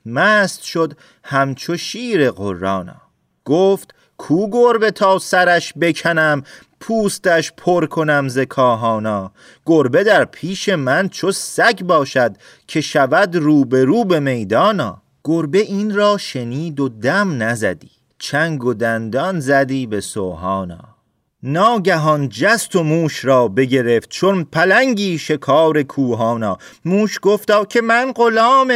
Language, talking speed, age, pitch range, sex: Persian, 115 wpm, 40-59, 135-200 Hz, male